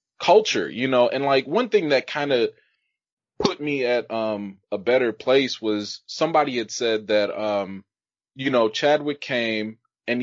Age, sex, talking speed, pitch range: 20-39, male, 165 wpm, 110-150 Hz